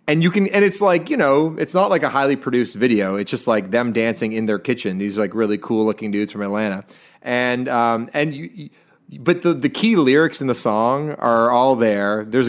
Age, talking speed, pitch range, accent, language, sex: 30-49, 235 wpm, 115-150 Hz, American, English, male